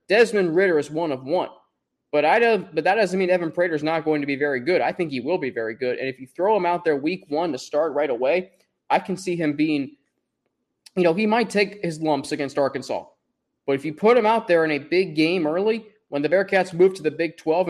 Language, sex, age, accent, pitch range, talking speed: English, male, 20-39, American, 155-205 Hz, 250 wpm